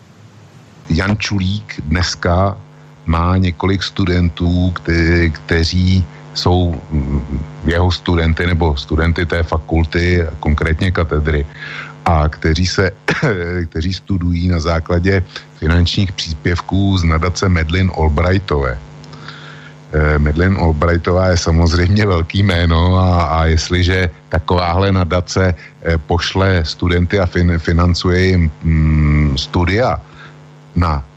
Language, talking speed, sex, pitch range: Slovak, 100 wpm, male, 80-95 Hz